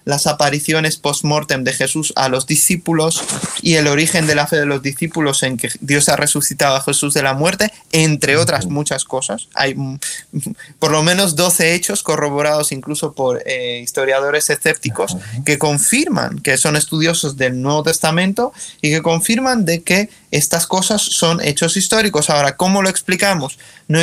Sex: male